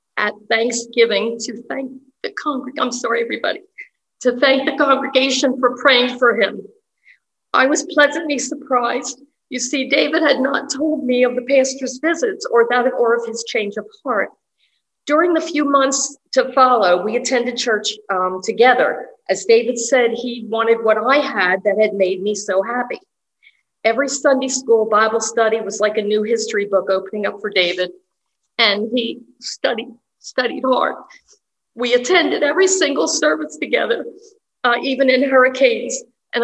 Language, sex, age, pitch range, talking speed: English, female, 50-69, 210-270 Hz, 160 wpm